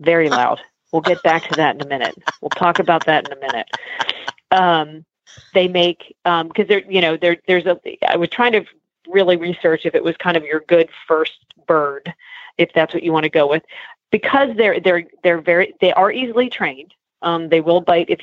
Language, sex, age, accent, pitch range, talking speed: English, female, 40-59, American, 155-185 Hz, 215 wpm